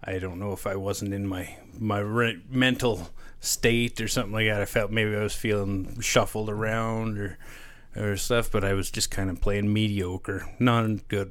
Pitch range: 95-120 Hz